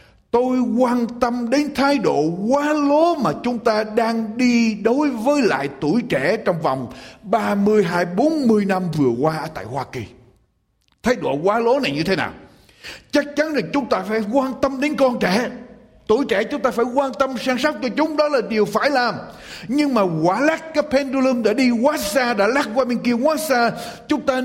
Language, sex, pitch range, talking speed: Vietnamese, male, 215-285 Hz, 200 wpm